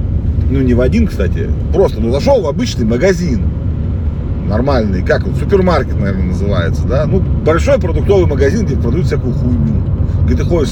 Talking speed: 160 wpm